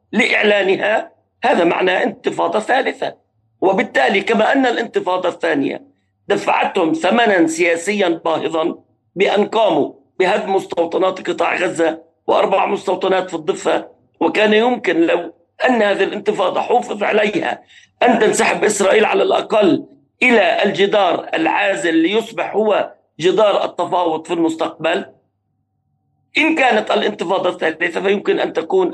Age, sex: 50-69, male